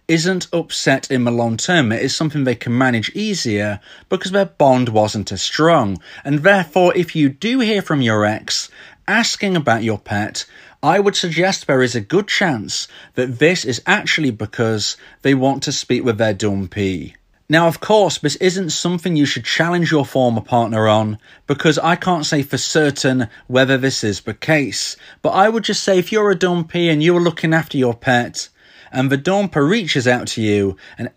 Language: English